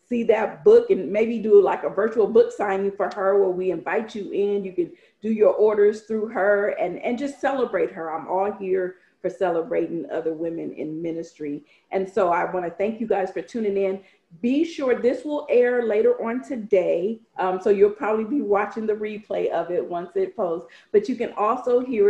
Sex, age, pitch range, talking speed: female, 40-59, 180-225 Hz, 205 wpm